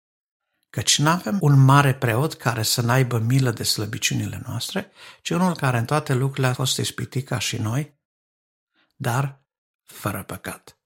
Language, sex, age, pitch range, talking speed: Romanian, male, 60-79, 125-145 Hz, 155 wpm